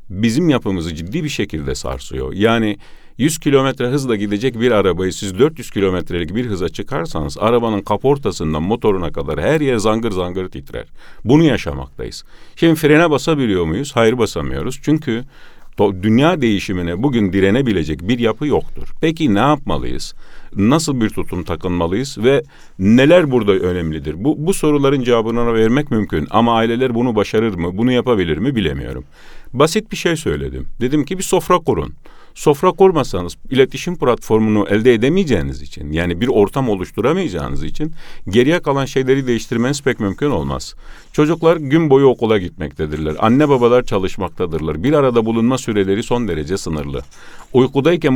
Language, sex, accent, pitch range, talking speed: Turkish, male, native, 90-140 Hz, 140 wpm